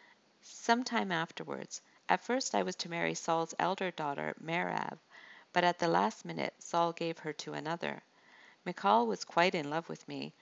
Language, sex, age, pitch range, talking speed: English, female, 50-69, 155-190 Hz, 175 wpm